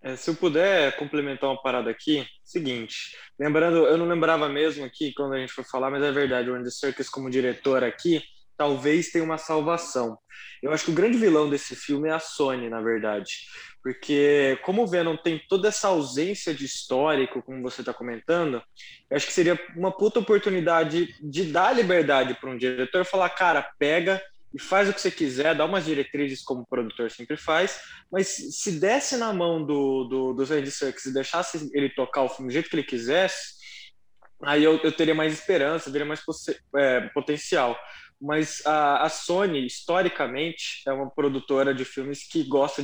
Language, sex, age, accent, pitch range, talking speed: Portuguese, male, 20-39, Brazilian, 130-160 Hz, 185 wpm